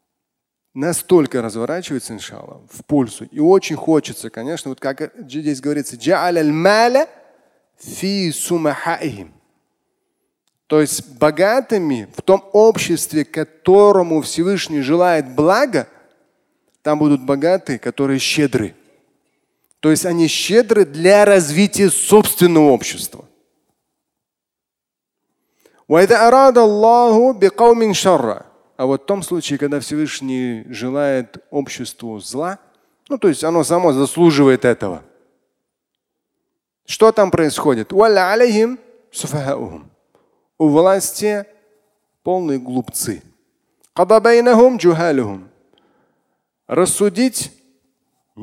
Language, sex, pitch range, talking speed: Russian, male, 140-200 Hz, 75 wpm